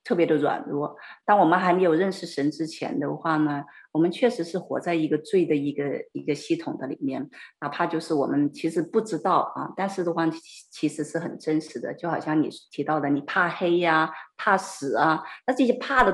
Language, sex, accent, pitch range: Chinese, female, native, 150-195 Hz